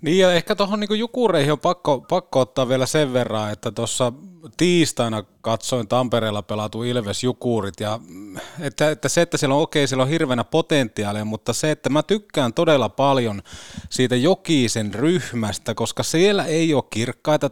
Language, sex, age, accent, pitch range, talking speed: Finnish, male, 30-49, native, 110-140 Hz, 160 wpm